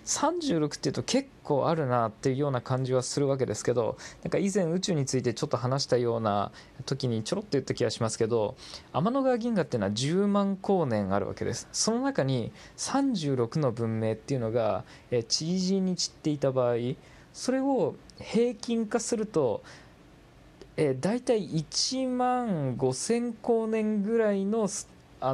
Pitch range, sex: 120-195 Hz, male